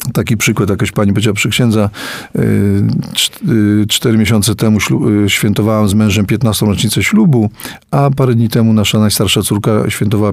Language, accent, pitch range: Polish, native, 100-120 Hz